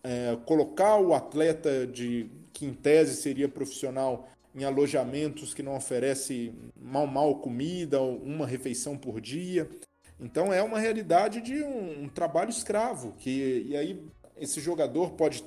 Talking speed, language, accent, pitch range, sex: 145 wpm, Portuguese, Brazilian, 140-195 Hz, male